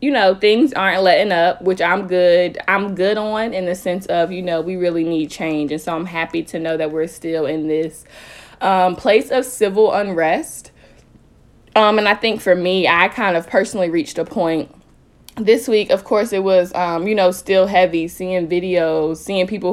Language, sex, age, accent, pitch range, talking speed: English, female, 20-39, American, 160-195 Hz, 200 wpm